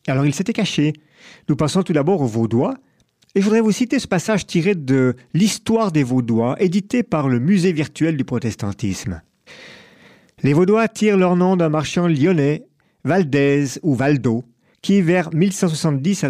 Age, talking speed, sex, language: 50-69, 160 wpm, male, French